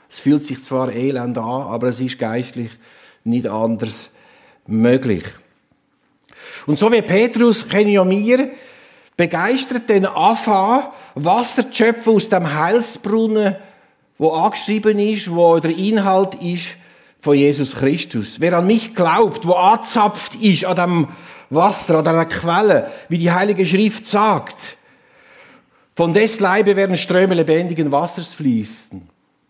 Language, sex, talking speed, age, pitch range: German, male, 130 wpm, 50-69, 145-210 Hz